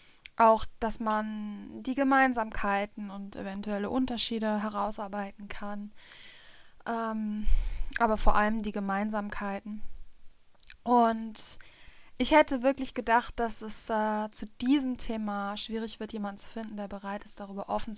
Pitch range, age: 210-235 Hz, 10-29